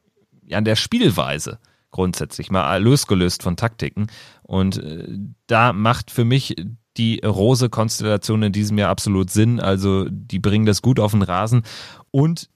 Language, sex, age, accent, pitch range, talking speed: German, male, 30-49, German, 105-125 Hz, 140 wpm